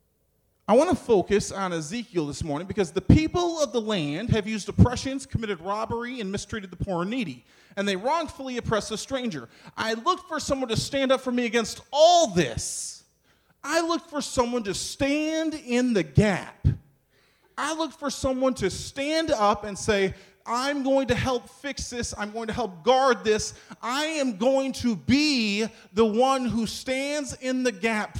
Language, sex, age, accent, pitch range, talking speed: English, male, 30-49, American, 160-255 Hz, 180 wpm